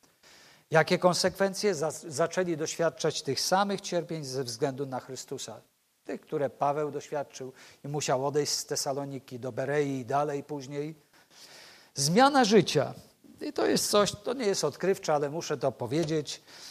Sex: male